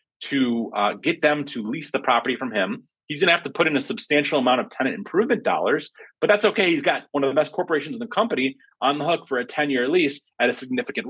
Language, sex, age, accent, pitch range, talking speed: English, male, 30-49, American, 120-165 Hz, 255 wpm